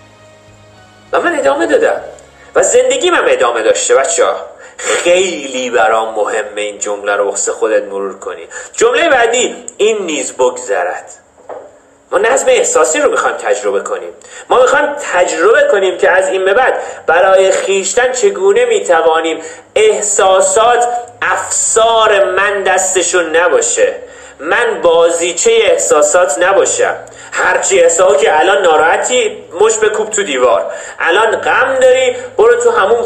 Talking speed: 125 wpm